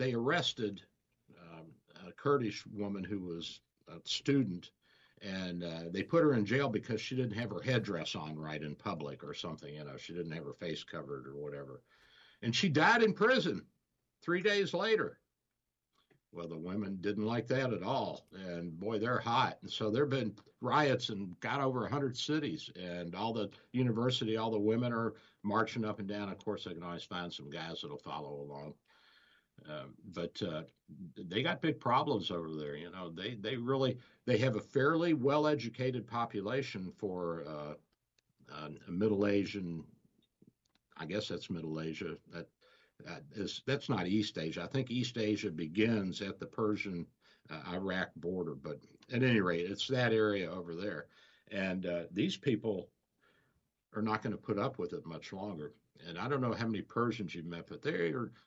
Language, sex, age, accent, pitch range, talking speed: English, male, 60-79, American, 85-125 Hz, 180 wpm